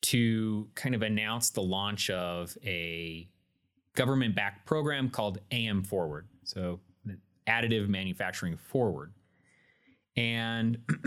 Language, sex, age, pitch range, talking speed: English, male, 30-49, 95-120 Hz, 105 wpm